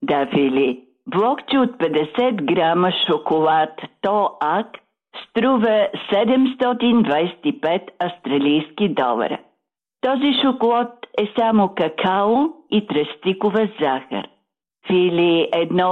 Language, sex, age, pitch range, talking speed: Bulgarian, female, 50-69, 165-230 Hz, 85 wpm